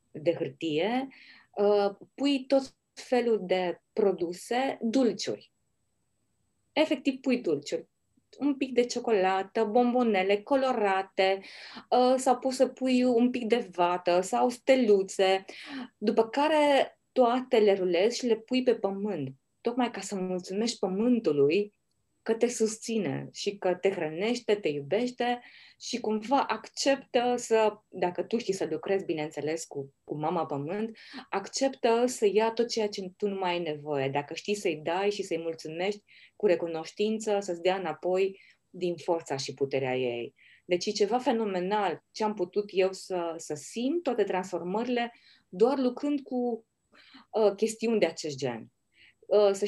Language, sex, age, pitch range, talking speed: Romanian, female, 20-39, 180-240 Hz, 135 wpm